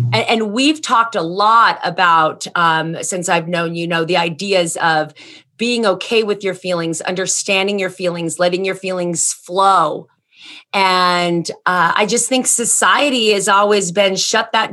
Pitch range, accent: 180-220 Hz, American